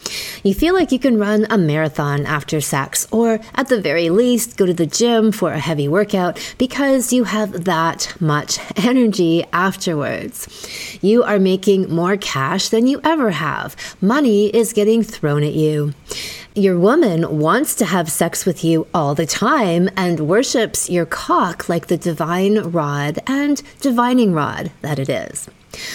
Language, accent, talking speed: English, American, 160 wpm